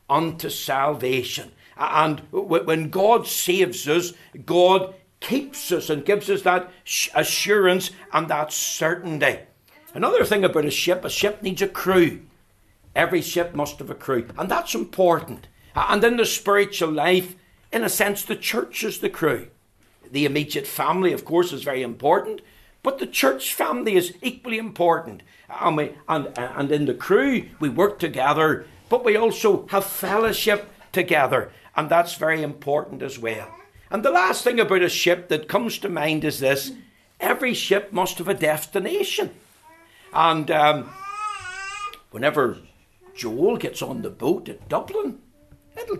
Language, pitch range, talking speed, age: English, 155-230 Hz, 155 wpm, 60-79